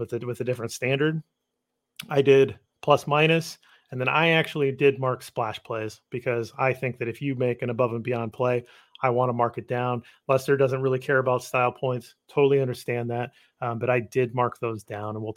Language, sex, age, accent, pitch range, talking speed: English, male, 30-49, American, 115-135 Hz, 215 wpm